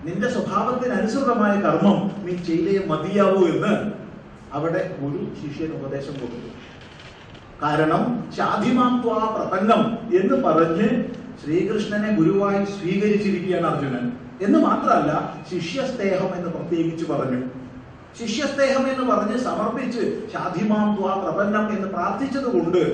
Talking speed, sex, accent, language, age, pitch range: 85 wpm, male, native, Malayalam, 40-59, 160-215 Hz